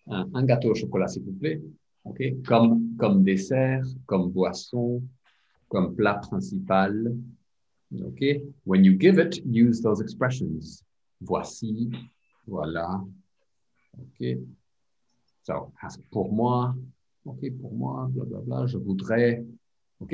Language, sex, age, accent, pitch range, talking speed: English, male, 50-69, French, 95-130 Hz, 120 wpm